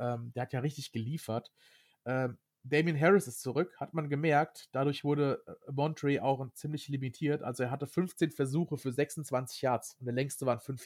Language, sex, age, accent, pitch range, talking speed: German, male, 30-49, German, 120-145 Hz, 170 wpm